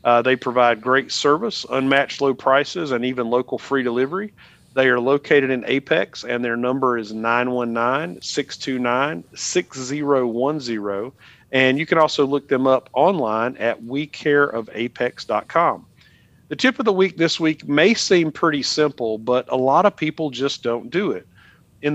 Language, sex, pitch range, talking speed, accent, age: English, male, 120-145 Hz, 150 wpm, American, 40-59